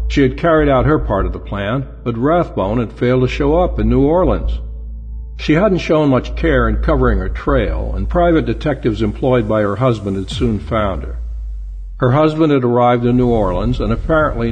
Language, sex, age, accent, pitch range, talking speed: English, male, 60-79, American, 95-130 Hz, 200 wpm